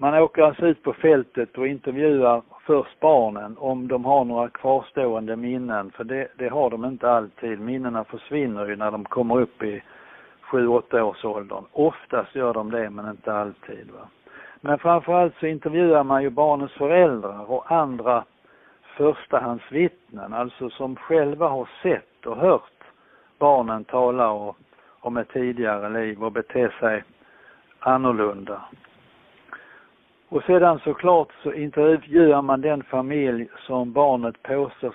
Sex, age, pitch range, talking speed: male, 60-79, 115-145 Hz, 140 wpm